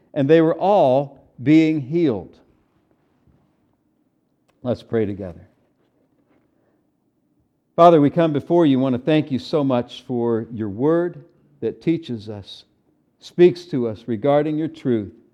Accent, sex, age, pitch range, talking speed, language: American, male, 60-79, 120-155 Hz, 125 wpm, English